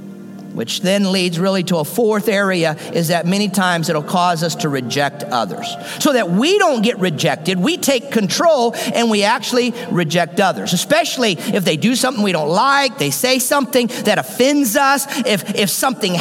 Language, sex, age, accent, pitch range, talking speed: English, male, 50-69, American, 180-260 Hz, 180 wpm